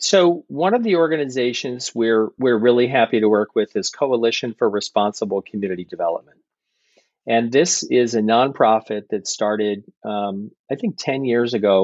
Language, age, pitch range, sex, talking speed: English, 40-59, 105-130 Hz, male, 155 wpm